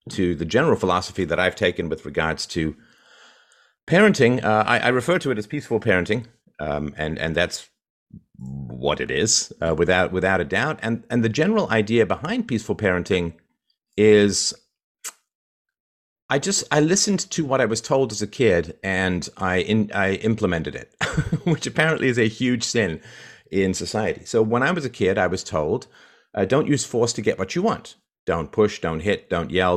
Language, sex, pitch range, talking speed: English, male, 90-120 Hz, 185 wpm